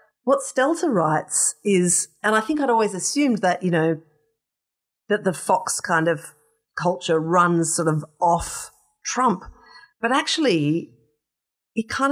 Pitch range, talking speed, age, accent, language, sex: 170-230 Hz, 140 wpm, 40-59, Australian, English, female